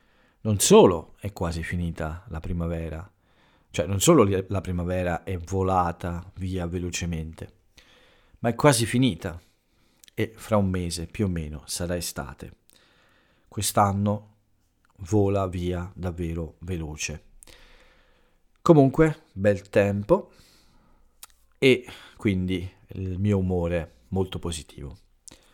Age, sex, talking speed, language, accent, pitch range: 40-59, male, 105 wpm, Italian, native, 85-105 Hz